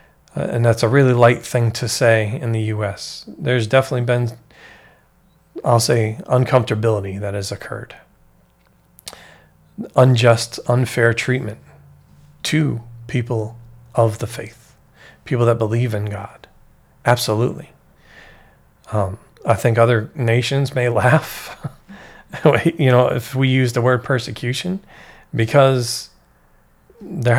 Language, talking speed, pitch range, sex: English, 110 wpm, 105-130 Hz, male